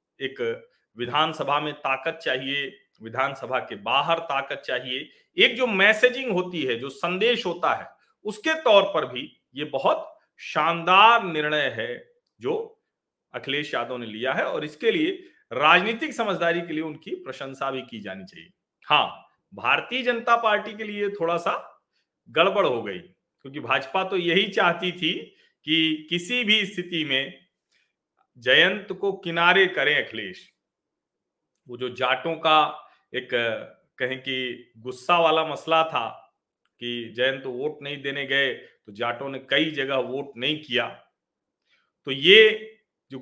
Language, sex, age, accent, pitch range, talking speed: Hindi, male, 40-59, native, 135-195 Hz, 140 wpm